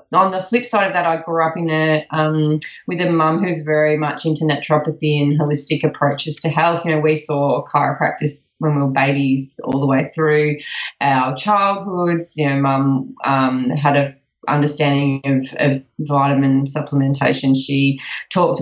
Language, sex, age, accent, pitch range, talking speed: English, female, 20-39, Australian, 145-165 Hz, 170 wpm